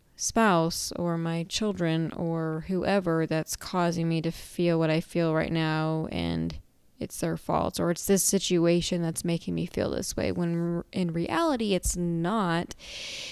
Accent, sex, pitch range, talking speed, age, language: American, female, 165-195 Hz, 160 wpm, 20-39, English